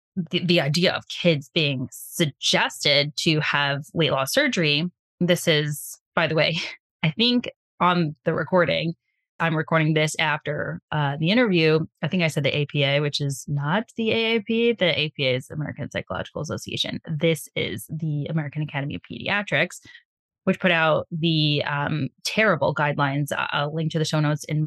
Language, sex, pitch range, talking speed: English, female, 150-190 Hz, 165 wpm